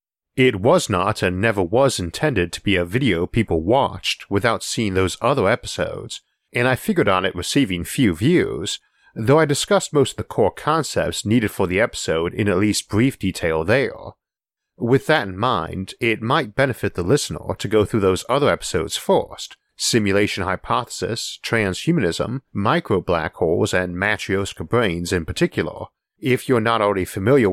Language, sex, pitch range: English, male, 90-130 Hz